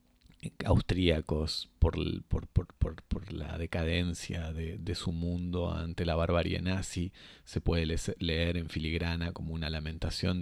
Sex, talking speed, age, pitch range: male, 140 wpm, 30-49, 85-100 Hz